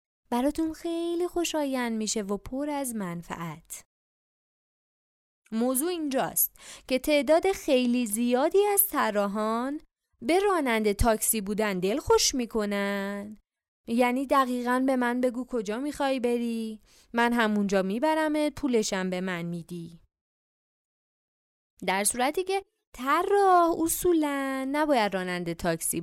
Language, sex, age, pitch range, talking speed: Persian, female, 20-39, 195-300 Hz, 110 wpm